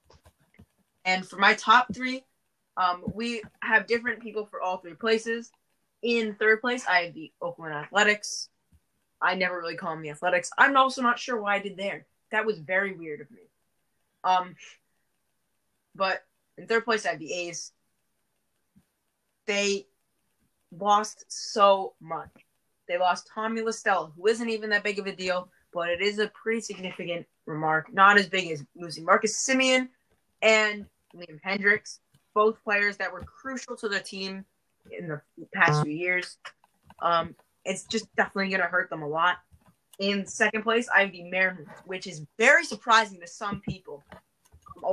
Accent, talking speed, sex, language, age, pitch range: American, 165 wpm, female, English, 20-39, 180-225 Hz